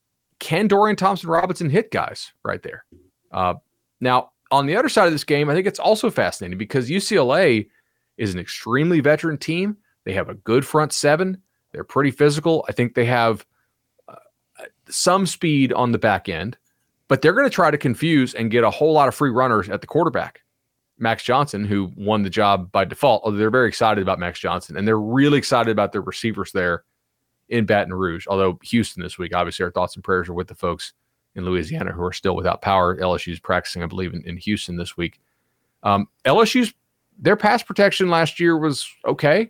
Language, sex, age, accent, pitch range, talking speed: English, male, 30-49, American, 105-155 Hz, 195 wpm